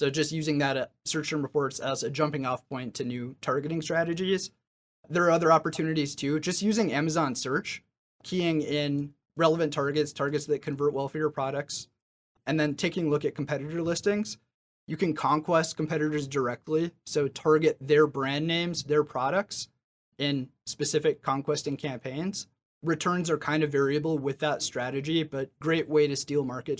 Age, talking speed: 30-49, 165 wpm